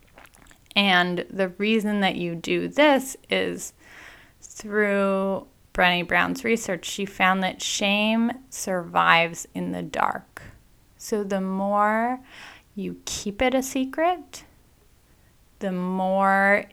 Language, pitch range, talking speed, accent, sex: English, 175-205 Hz, 110 wpm, American, female